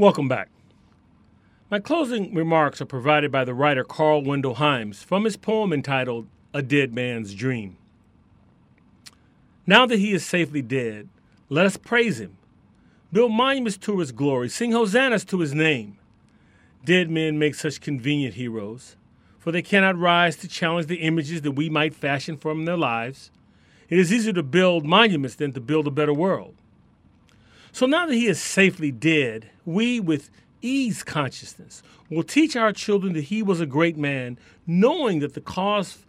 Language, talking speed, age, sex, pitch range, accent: English, 165 wpm, 40-59, male, 125-185 Hz, American